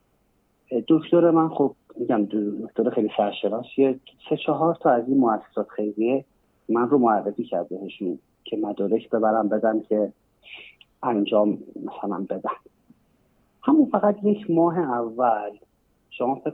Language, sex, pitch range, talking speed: Persian, male, 115-155 Hz, 120 wpm